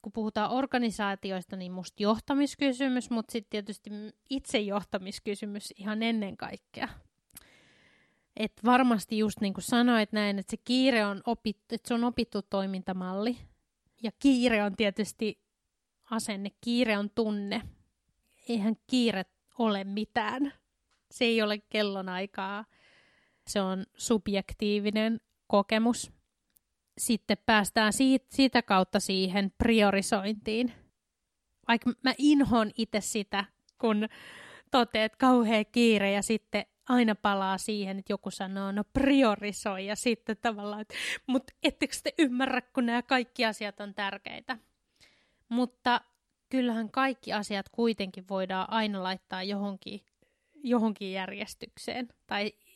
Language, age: Finnish, 20-39